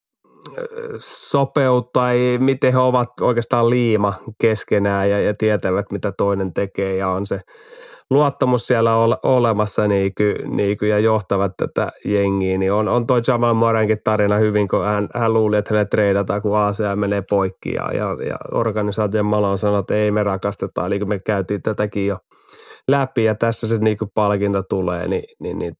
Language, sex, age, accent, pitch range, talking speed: Finnish, male, 20-39, native, 100-115 Hz, 165 wpm